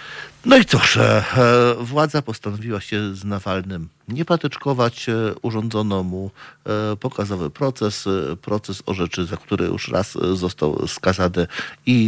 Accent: native